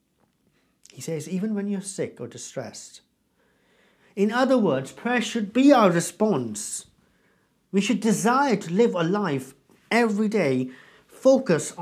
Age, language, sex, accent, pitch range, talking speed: 50-69, English, male, British, 155-210 Hz, 130 wpm